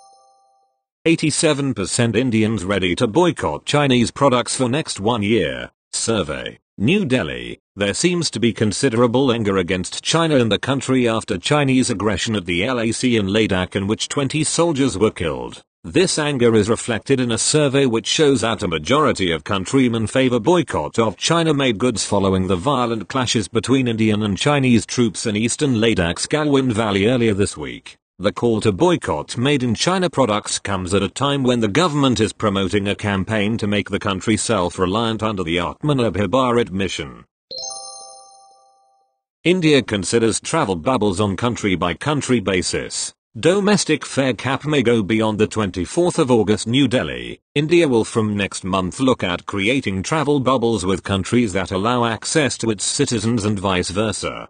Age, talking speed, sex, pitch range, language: 40-59, 155 wpm, male, 105-130 Hz, English